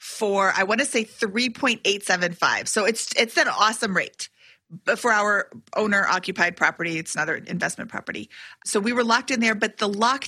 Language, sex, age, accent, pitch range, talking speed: English, female, 30-49, American, 195-250 Hz, 175 wpm